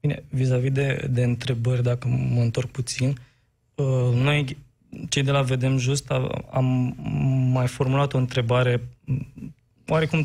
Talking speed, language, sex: 125 wpm, Romanian, male